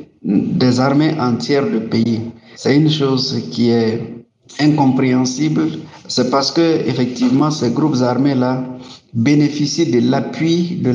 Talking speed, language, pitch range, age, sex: 120 wpm, French, 125-150 Hz, 60-79, male